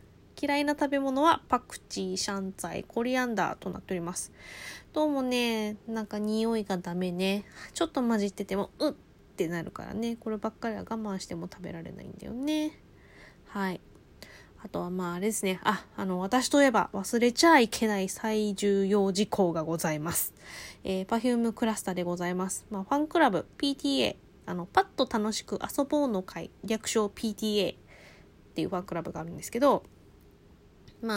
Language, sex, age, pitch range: Japanese, female, 20-39, 185-240 Hz